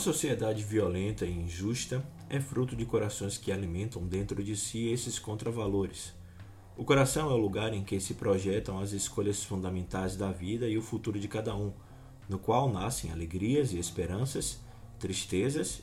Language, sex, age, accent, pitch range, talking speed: Portuguese, male, 20-39, Brazilian, 100-140 Hz, 165 wpm